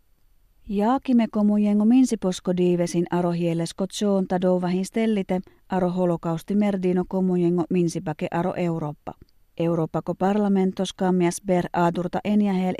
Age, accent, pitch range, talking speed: 30-49, native, 175-205 Hz, 90 wpm